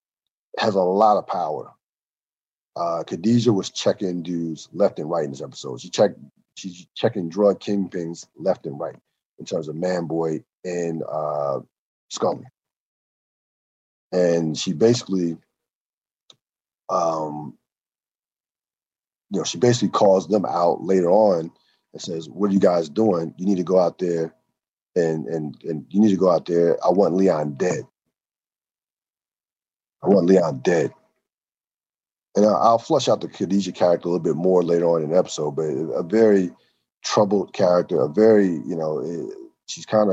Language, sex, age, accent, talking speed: English, male, 40-59, American, 155 wpm